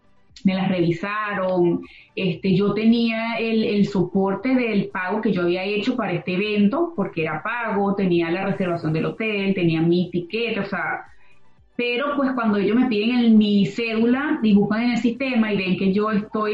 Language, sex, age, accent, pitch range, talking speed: Spanish, female, 20-39, Venezuelan, 185-225 Hz, 180 wpm